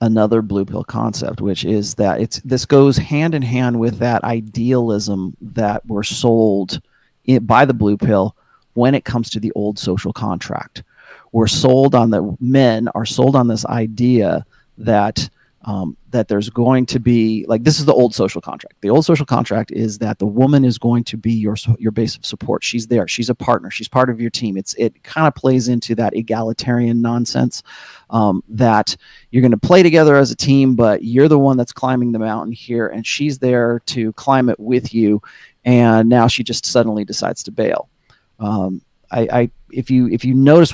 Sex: male